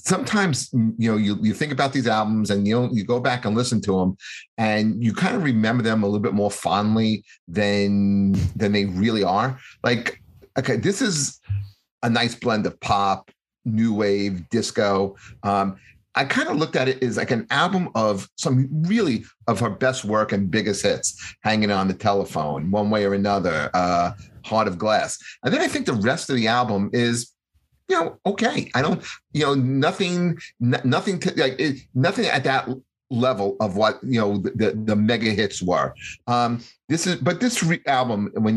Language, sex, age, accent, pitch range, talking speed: English, male, 40-59, American, 100-125 Hz, 190 wpm